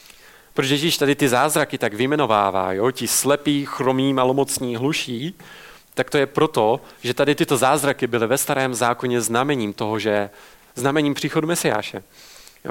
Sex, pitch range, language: male, 120-145 Hz, Czech